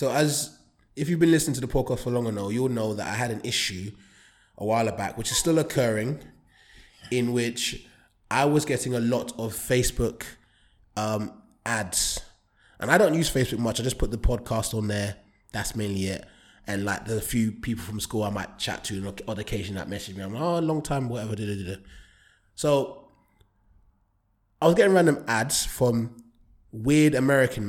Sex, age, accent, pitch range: male, 20-39, British, 100-130 Hz